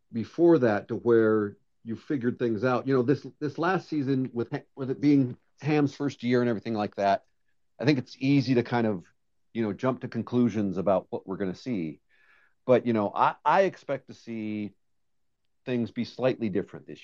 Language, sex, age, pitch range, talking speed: English, male, 50-69, 100-130 Hz, 195 wpm